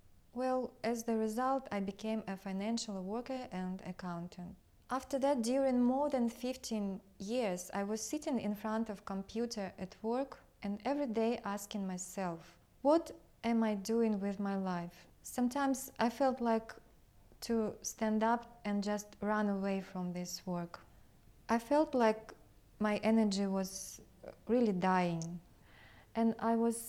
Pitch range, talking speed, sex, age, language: 190-230 Hz, 145 wpm, female, 20-39, English